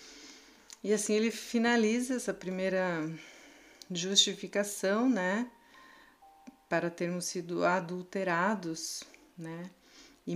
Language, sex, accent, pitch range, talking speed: Portuguese, female, Brazilian, 175-210 Hz, 80 wpm